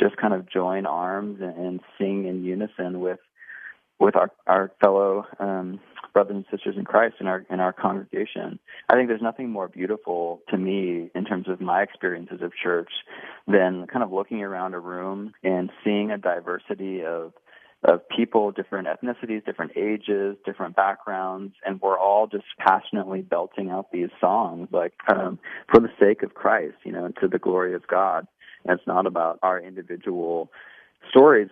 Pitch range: 90-110 Hz